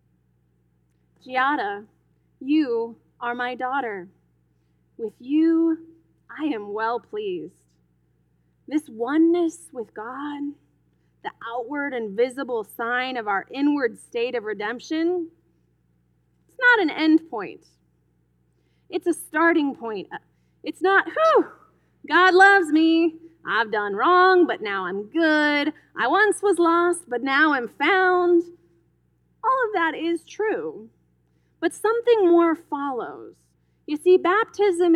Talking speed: 115 wpm